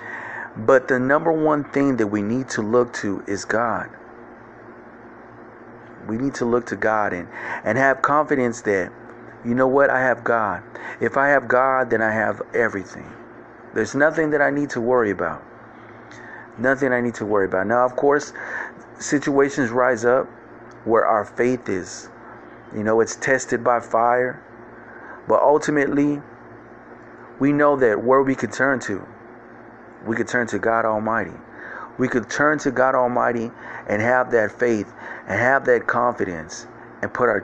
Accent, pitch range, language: American, 110-135 Hz, English